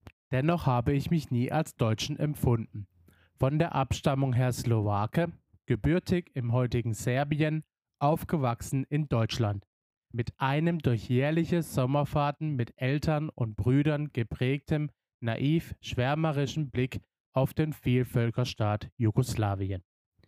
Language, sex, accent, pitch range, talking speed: German, male, German, 115-150 Hz, 105 wpm